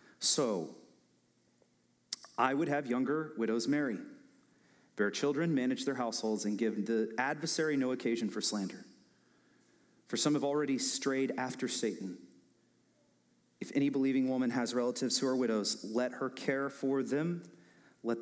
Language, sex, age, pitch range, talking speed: English, male, 30-49, 110-140 Hz, 140 wpm